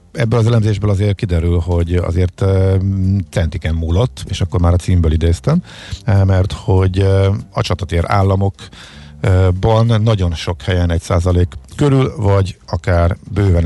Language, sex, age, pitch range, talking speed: Hungarian, male, 50-69, 85-105 Hz, 125 wpm